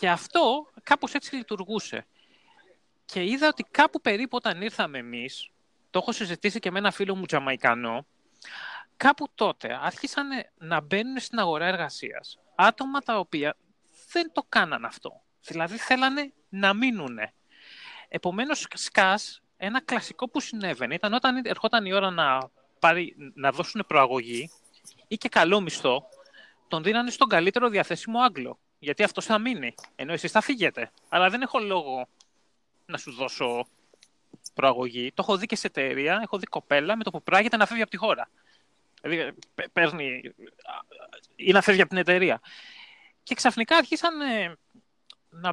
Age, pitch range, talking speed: 30-49, 155-245 Hz, 150 wpm